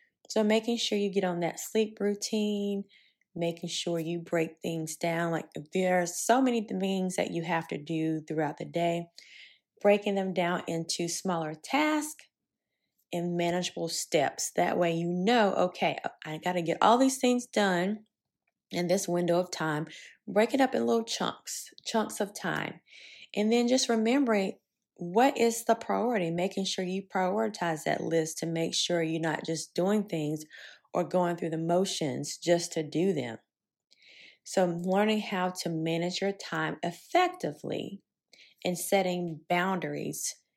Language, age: English, 20-39